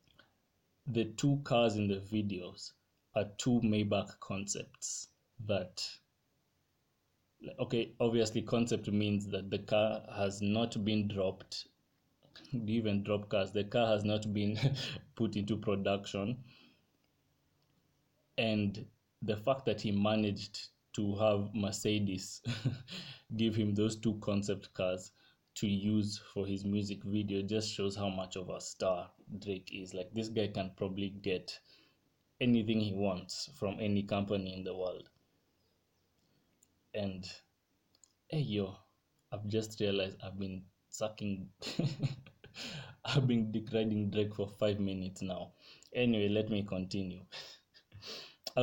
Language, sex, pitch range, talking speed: English, male, 100-115 Hz, 125 wpm